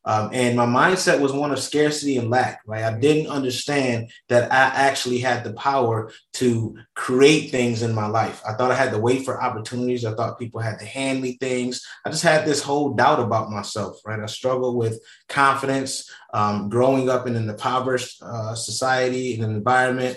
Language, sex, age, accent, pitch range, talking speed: English, male, 20-39, American, 110-130 Hz, 195 wpm